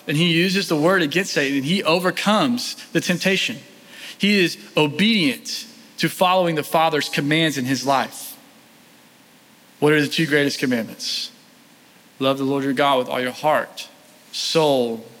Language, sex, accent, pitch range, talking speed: English, male, American, 150-240 Hz, 155 wpm